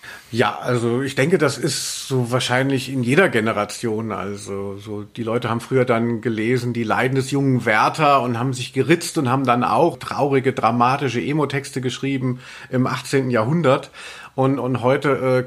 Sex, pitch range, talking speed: male, 120-140 Hz, 165 wpm